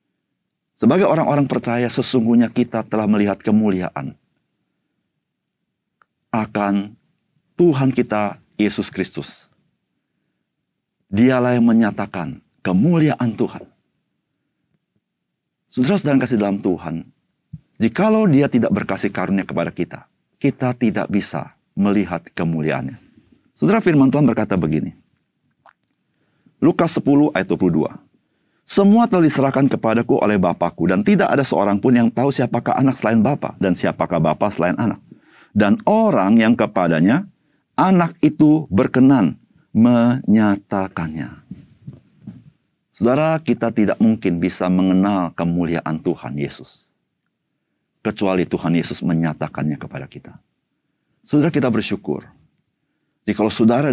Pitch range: 95-135 Hz